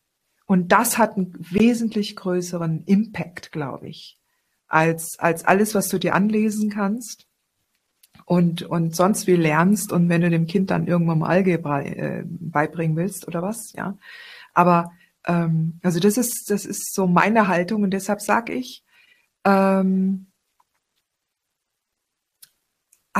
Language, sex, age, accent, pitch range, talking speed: German, female, 50-69, German, 170-205 Hz, 135 wpm